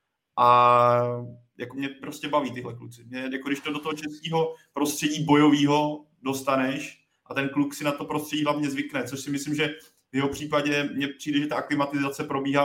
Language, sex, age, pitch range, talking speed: Czech, male, 20-39, 125-145 Hz, 185 wpm